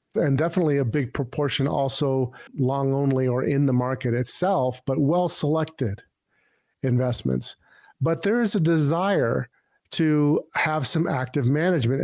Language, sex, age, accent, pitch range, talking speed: English, male, 50-69, American, 130-160 Hz, 130 wpm